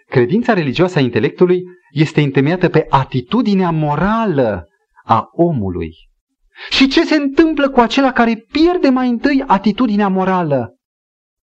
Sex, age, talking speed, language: male, 30-49, 120 wpm, Romanian